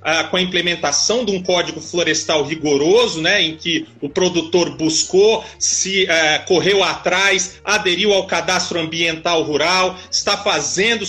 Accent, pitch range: Brazilian, 170-230 Hz